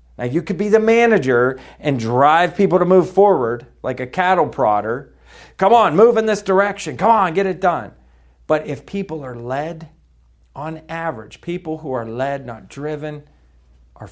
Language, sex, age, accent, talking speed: English, male, 40-59, American, 175 wpm